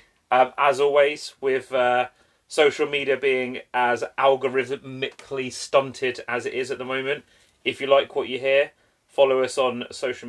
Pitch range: 115-135 Hz